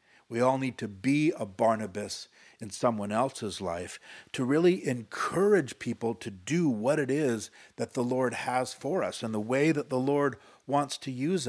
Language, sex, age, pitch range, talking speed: English, male, 50-69, 110-140 Hz, 185 wpm